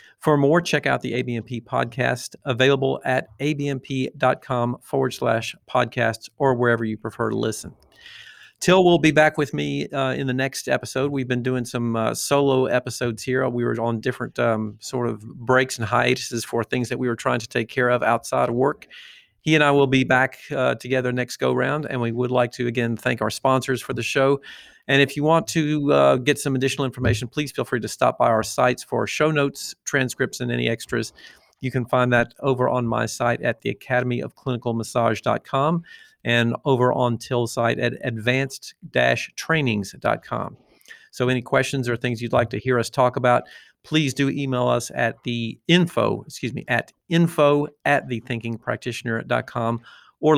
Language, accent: English, American